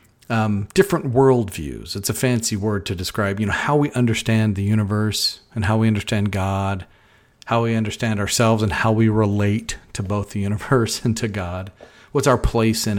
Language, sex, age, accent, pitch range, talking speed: English, male, 40-59, American, 100-125 Hz, 185 wpm